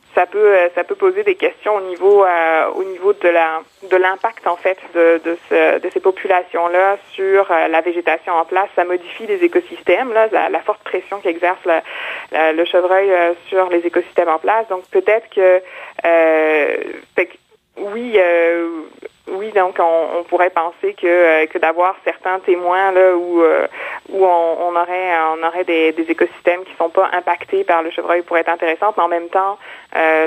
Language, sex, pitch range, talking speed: French, female, 170-195 Hz, 185 wpm